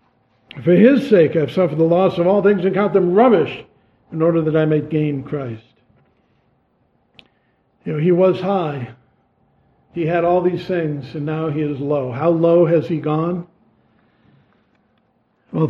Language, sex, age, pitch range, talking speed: English, male, 60-79, 150-185 Hz, 165 wpm